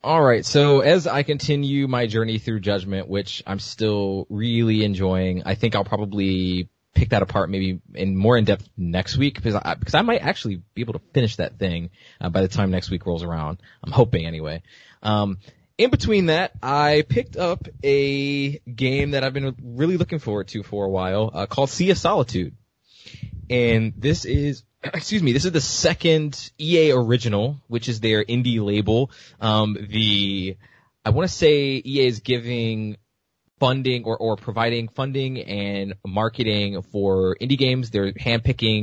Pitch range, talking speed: 100-125 Hz, 175 wpm